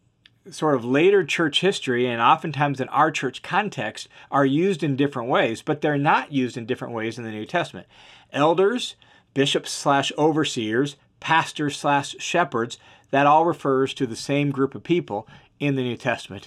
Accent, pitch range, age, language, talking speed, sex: American, 135-165 Hz, 40-59, English, 170 wpm, male